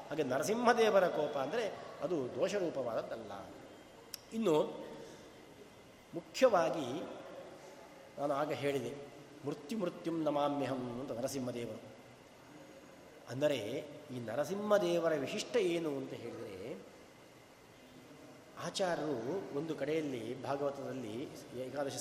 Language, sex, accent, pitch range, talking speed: Kannada, male, native, 145-215 Hz, 75 wpm